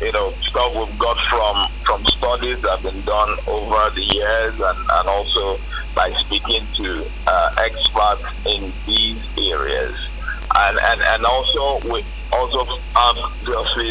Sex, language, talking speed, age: male, English, 150 wpm, 50-69